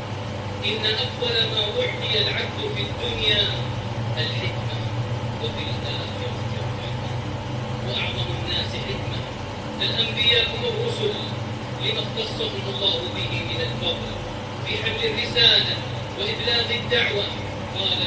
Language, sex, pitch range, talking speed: English, male, 110-120 Hz, 100 wpm